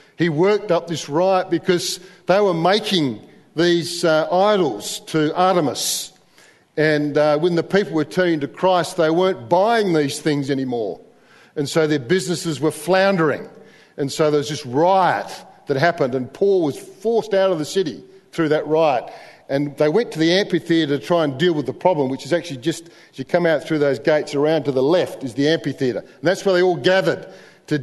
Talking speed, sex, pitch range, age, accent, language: 200 wpm, male, 150-195 Hz, 50-69, Australian, English